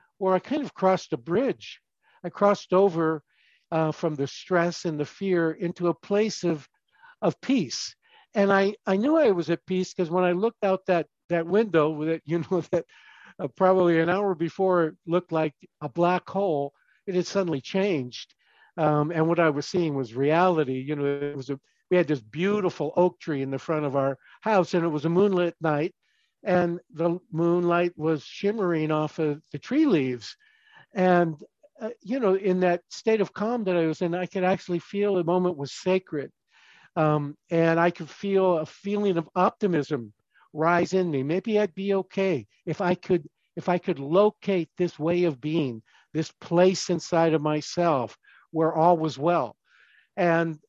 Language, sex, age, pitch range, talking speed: English, male, 60-79, 155-190 Hz, 185 wpm